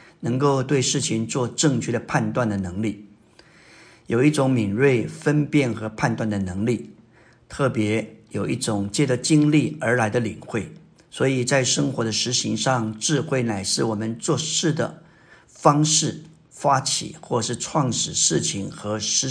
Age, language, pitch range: 50-69, Chinese, 115-145 Hz